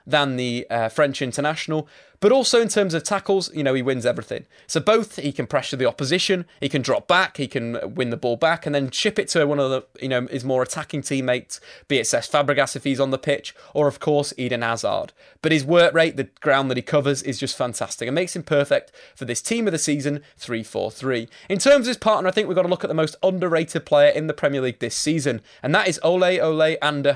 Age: 20-39